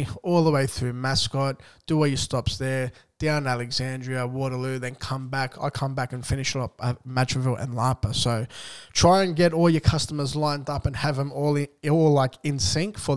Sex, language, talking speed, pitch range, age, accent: male, English, 200 wpm, 125-150 Hz, 20-39, Australian